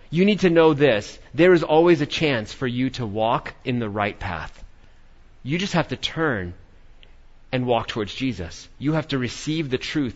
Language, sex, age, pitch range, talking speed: English, male, 30-49, 100-140 Hz, 195 wpm